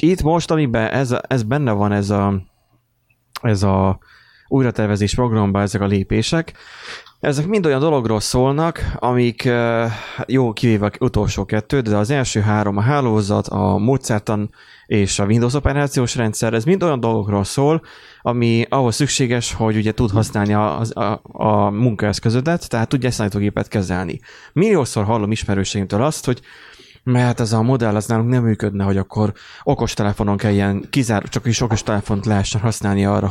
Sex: male